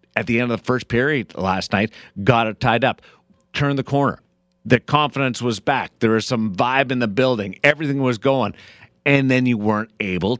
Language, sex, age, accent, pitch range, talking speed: English, male, 50-69, American, 115-155 Hz, 200 wpm